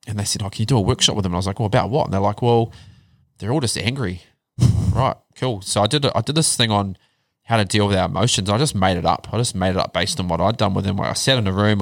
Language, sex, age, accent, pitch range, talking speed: English, male, 20-39, Australian, 95-120 Hz, 335 wpm